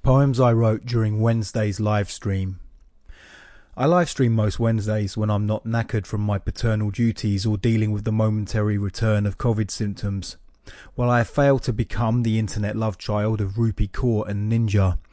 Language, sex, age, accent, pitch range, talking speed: English, male, 30-49, British, 105-125 Hz, 175 wpm